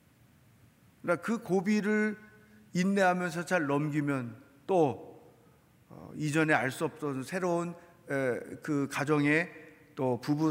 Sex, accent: male, native